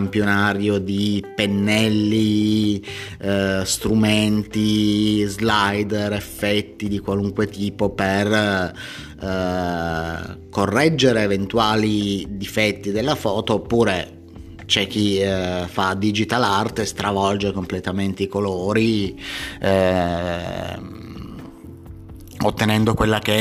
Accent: native